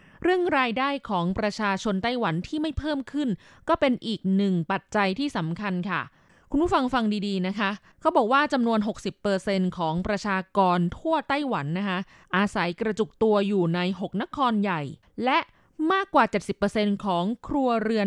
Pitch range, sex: 185-245 Hz, female